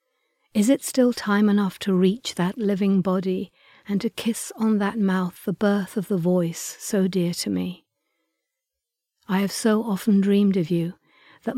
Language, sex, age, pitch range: English, female, 60-79, 185-215 Hz